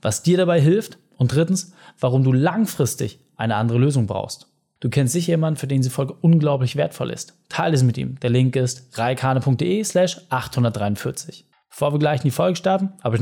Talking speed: 195 wpm